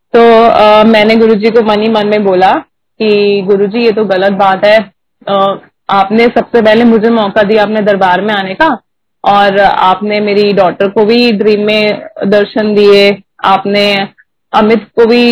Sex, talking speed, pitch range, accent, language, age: female, 160 wpm, 205-225 Hz, native, Hindi, 30-49